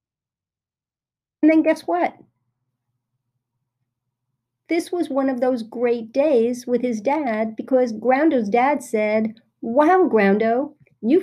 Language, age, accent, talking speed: English, 50-69, American, 110 wpm